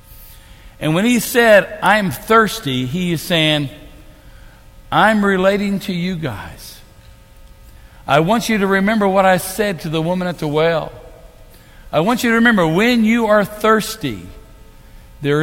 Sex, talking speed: male, 150 wpm